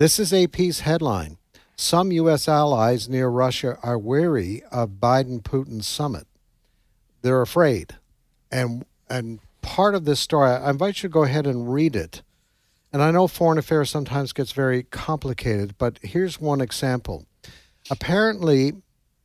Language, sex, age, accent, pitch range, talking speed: English, male, 60-79, American, 120-150 Hz, 140 wpm